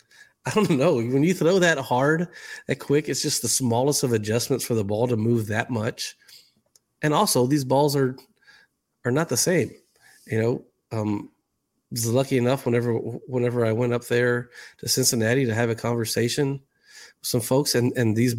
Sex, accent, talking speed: male, American, 185 wpm